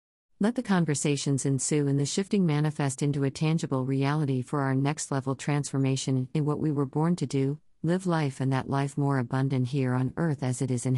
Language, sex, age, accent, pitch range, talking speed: English, female, 50-69, American, 130-160 Hz, 210 wpm